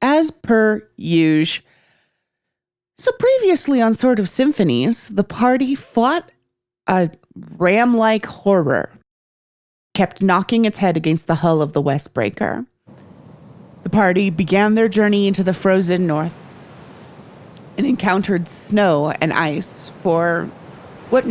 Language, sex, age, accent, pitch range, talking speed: English, female, 30-49, American, 160-205 Hz, 120 wpm